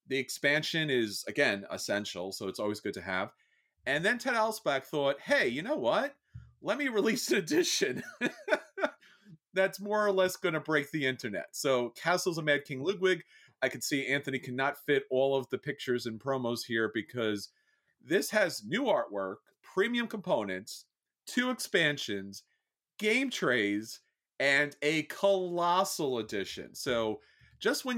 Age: 30-49